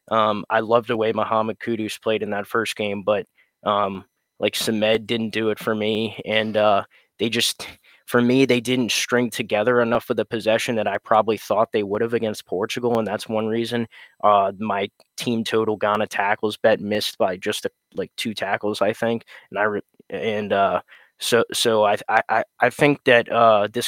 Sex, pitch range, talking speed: male, 110-120 Hz, 195 wpm